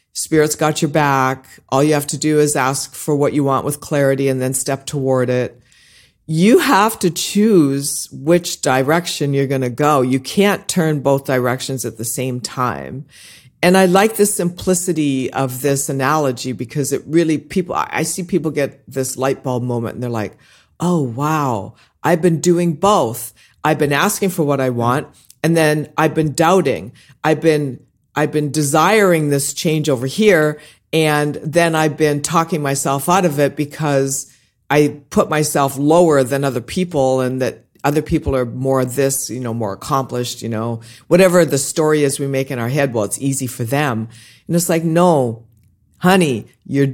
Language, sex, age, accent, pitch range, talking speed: English, female, 50-69, American, 130-165 Hz, 180 wpm